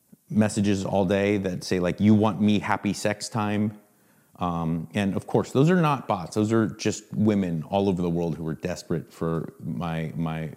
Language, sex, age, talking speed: English, male, 30-49, 195 wpm